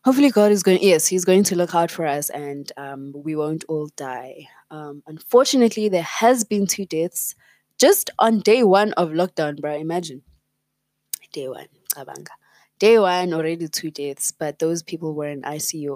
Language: English